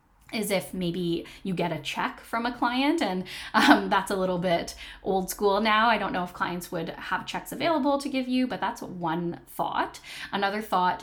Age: 10-29